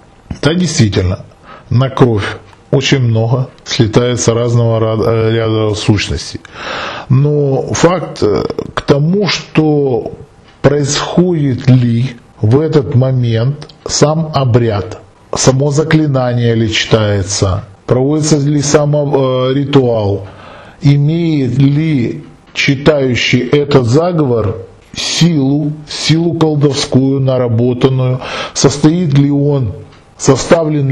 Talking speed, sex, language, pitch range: 85 wpm, male, Russian, 110-145 Hz